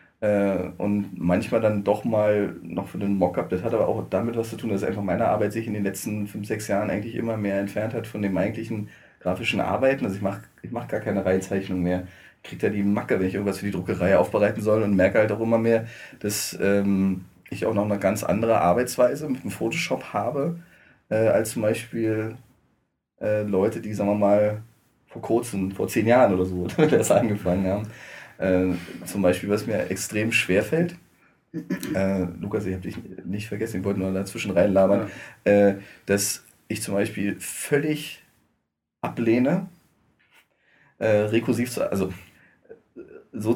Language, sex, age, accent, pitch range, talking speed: German, male, 30-49, German, 95-115 Hz, 180 wpm